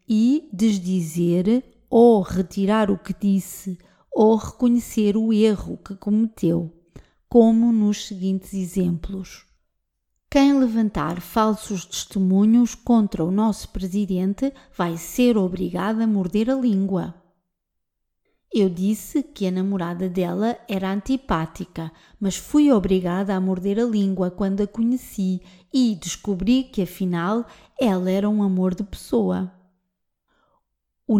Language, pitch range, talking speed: Portuguese, 185-230 Hz, 115 wpm